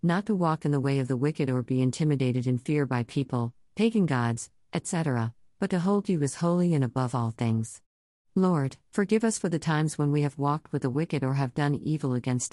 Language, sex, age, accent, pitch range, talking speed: English, female, 50-69, American, 130-165 Hz, 225 wpm